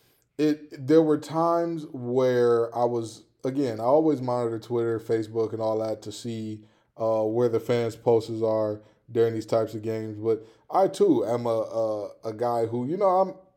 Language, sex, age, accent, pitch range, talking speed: English, male, 20-39, American, 115-130 Hz, 180 wpm